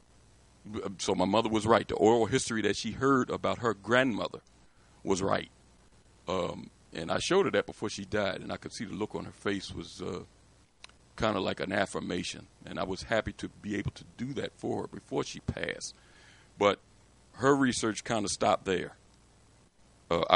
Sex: male